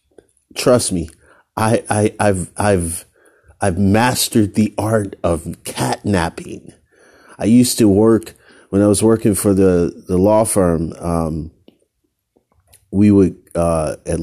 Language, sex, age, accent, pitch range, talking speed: English, male, 40-59, American, 85-115 Hz, 125 wpm